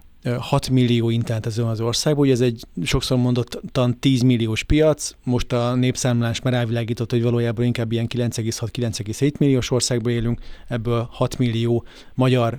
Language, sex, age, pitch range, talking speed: Hungarian, male, 30-49, 120-130 Hz, 145 wpm